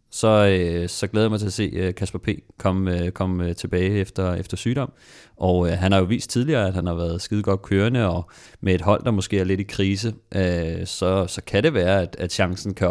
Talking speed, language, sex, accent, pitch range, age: 230 wpm, Danish, male, native, 90-105 Hz, 30-49